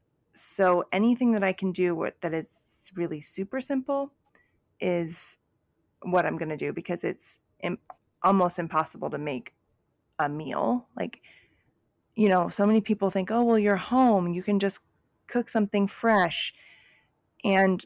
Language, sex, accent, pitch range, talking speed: English, female, American, 160-210 Hz, 145 wpm